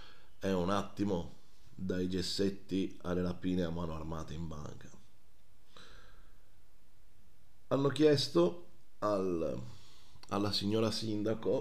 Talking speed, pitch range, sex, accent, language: 95 wpm, 85-115 Hz, male, native, Italian